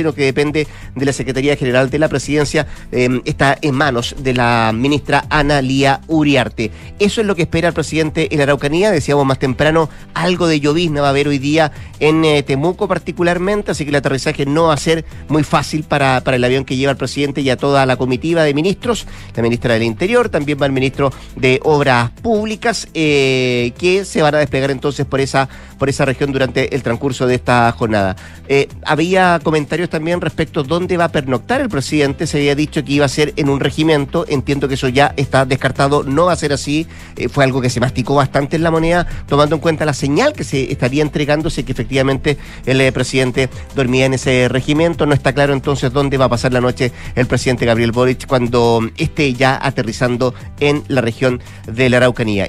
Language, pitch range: Spanish, 130-155 Hz